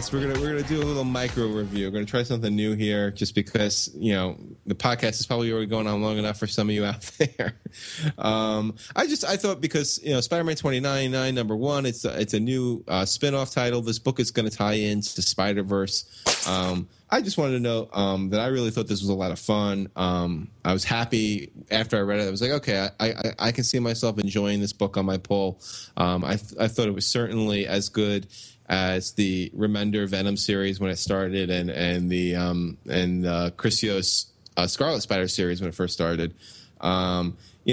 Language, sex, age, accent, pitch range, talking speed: English, male, 20-39, American, 100-120 Hz, 225 wpm